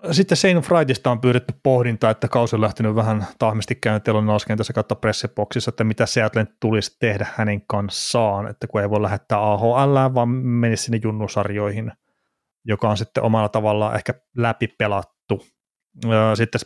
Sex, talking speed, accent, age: male, 140 wpm, native, 30-49